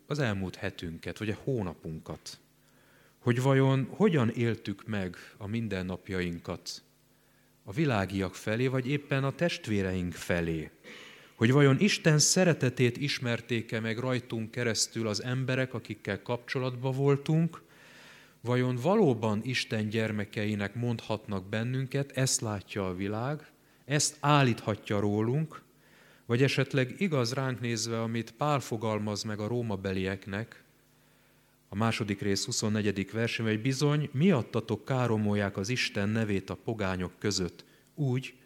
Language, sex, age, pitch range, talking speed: Hungarian, male, 30-49, 100-135 Hz, 115 wpm